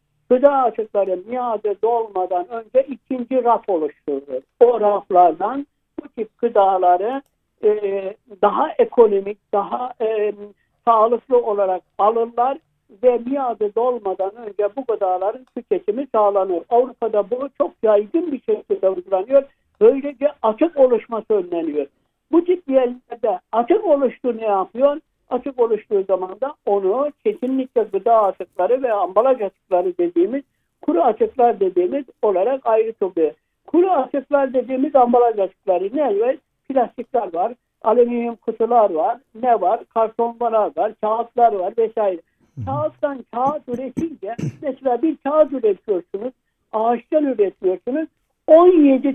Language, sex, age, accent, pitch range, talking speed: Turkish, male, 60-79, native, 210-275 Hz, 115 wpm